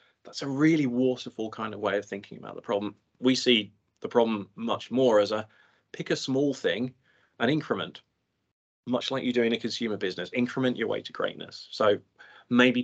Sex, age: male, 20-39